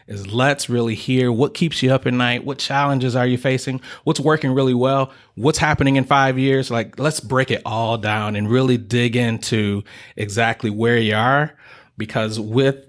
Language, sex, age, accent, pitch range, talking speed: English, male, 30-49, American, 110-130 Hz, 185 wpm